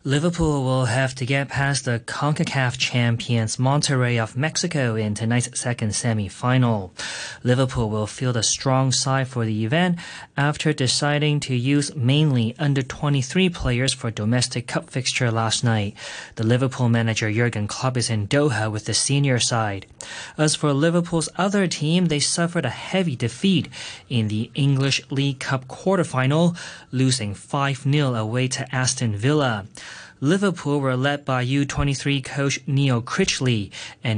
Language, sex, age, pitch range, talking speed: English, male, 20-39, 115-145 Hz, 140 wpm